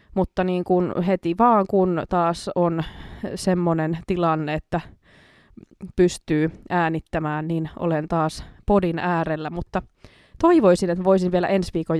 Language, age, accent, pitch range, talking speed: Finnish, 20-39, native, 170-205 Hz, 125 wpm